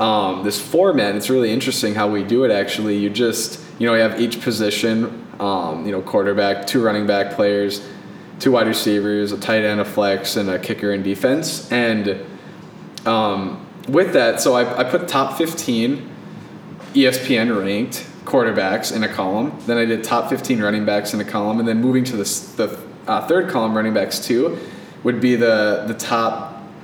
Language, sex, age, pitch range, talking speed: English, male, 10-29, 105-125 Hz, 180 wpm